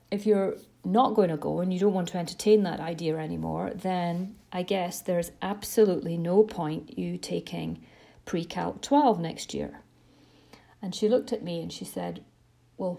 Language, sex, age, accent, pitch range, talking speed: English, female, 40-59, British, 170-220 Hz, 170 wpm